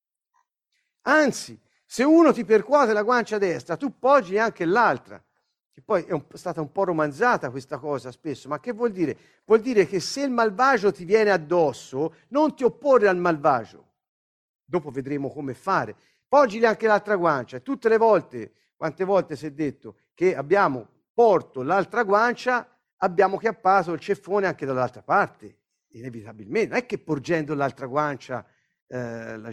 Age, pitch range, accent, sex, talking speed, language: 50-69, 150-235 Hz, native, male, 160 wpm, Italian